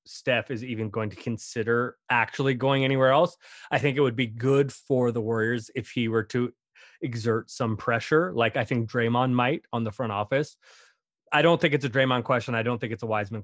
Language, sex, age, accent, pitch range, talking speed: English, male, 20-39, American, 115-140 Hz, 215 wpm